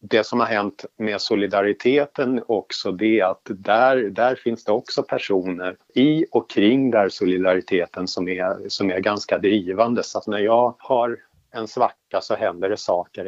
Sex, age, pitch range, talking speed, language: male, 50-69, 95-120 Hz, 165 wpm, Swedish